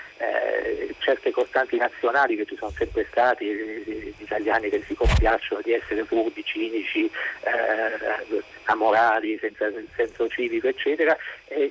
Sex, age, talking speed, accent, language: male, 50-69, 135 wpm, native, Italian